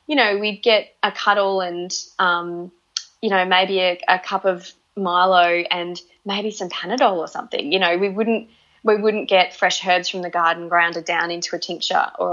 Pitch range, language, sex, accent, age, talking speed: 175-200 Hz, English, female, Australian, 20-39, 195 wpm